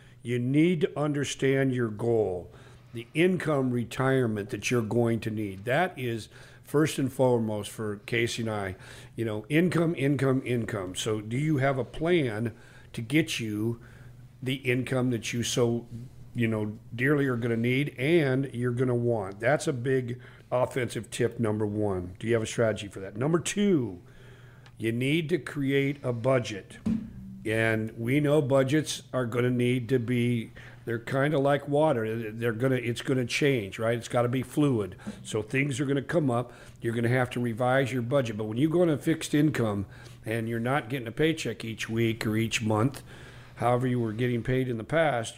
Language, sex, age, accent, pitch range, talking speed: English, male, 50-69, American, 115-135 Hz, 190 wpm